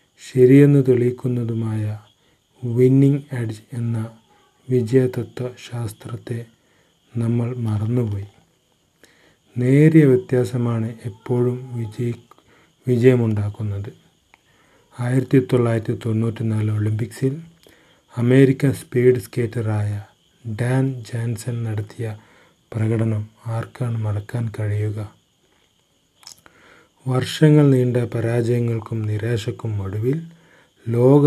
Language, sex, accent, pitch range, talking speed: Malayalam, male, native, 110-125 Hz, 65 wpm